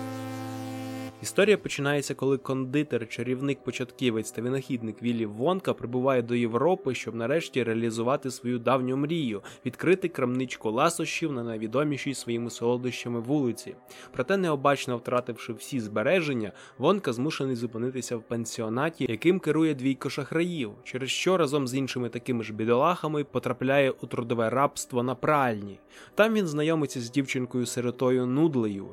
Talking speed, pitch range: 130 wpm, 120-140 Hz